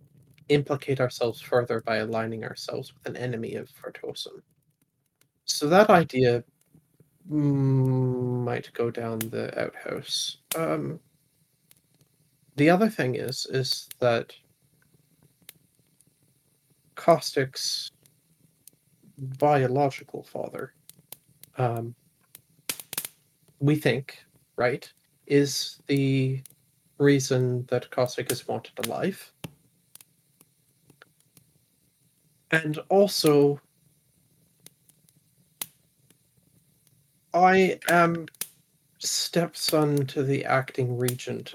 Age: 30-49